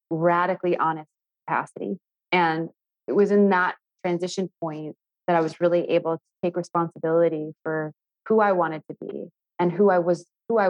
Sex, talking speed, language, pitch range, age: female, 170 wpm, English, 165-185 Hz, 20-39